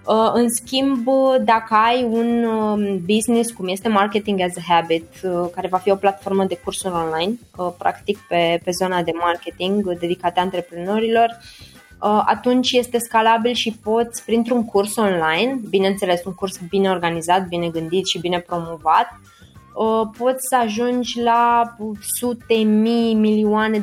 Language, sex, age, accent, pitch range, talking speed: Romanian, female, 20-39, native, 180-225 Hz, 135 wpm